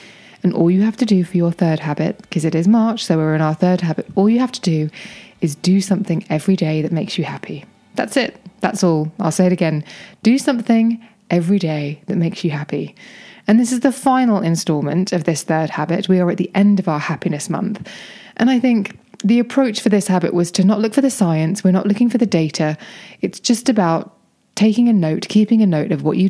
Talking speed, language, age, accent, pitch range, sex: 235 wpm, English, 20-39, British, 170-215 Hz, female